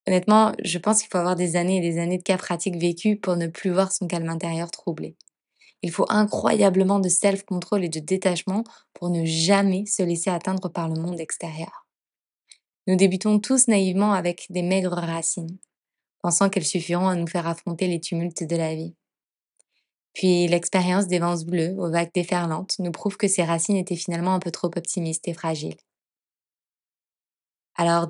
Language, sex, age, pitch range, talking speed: French, female, 20-39, 170-195 Hz, 175 wpm